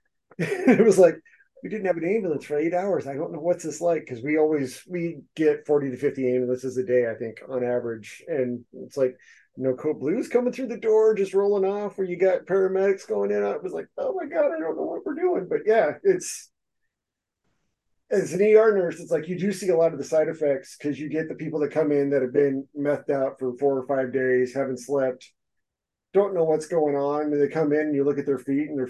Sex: male